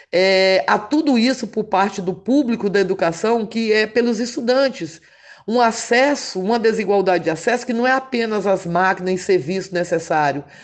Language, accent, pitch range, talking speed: Portuguese, Brazilian, 185-230 Hz, 165 wpm